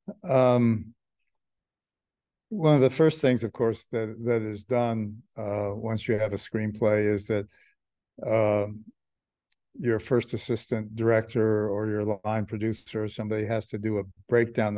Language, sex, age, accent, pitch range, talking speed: English, male, 60-79, American, 105-115 Hz, 145 wpm